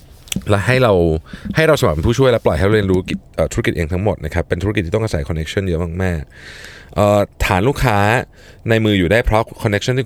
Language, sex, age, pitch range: Thai, male, 20-39, 85-110 Hz